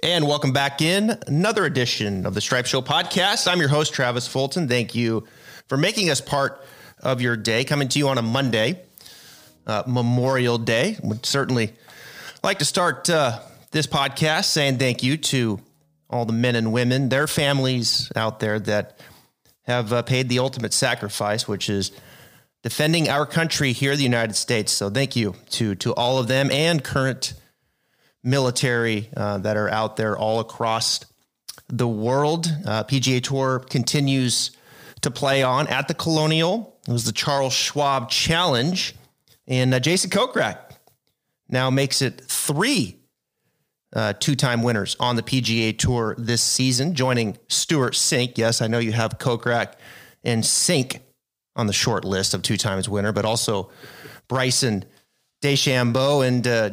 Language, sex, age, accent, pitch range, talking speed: English, male, 30-49, American, 115-140 Hz, 160 wpm